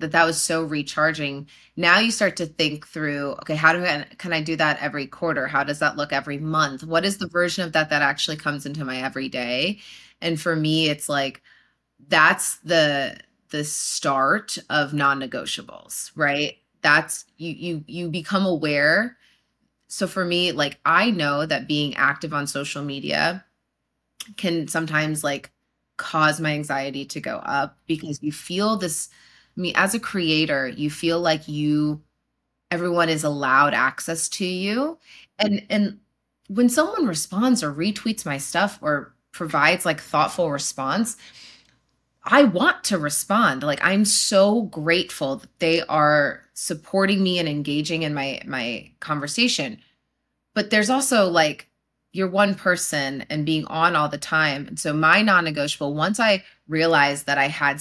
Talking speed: 160 wpm